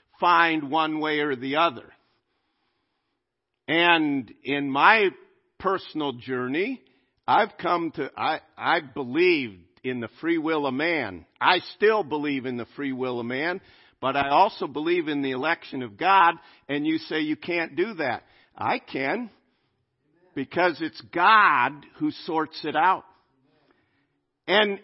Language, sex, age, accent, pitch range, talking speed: English, male, 50-69, American, 145-220 Hz, 140 wpm